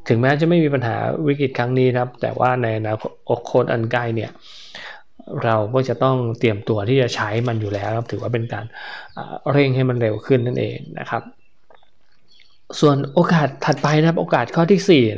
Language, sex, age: Thai, male, 20-39